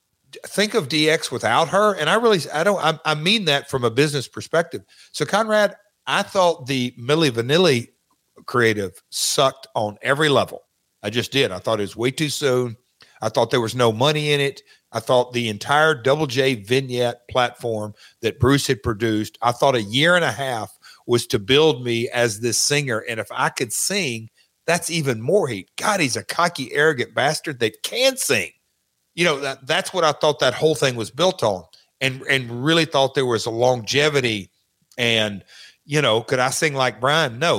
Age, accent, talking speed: 50-69, American, 195 wpm